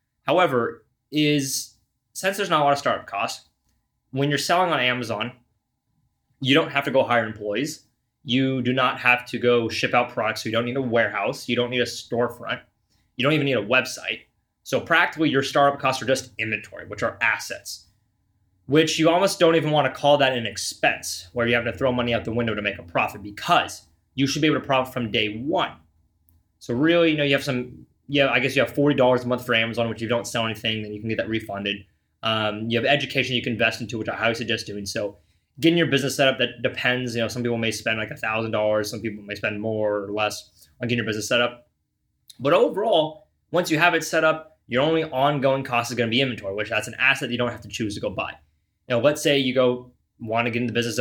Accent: American